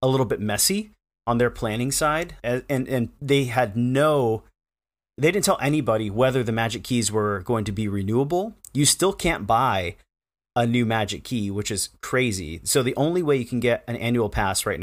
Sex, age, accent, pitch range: male, 30-49, American, 105-130 Hz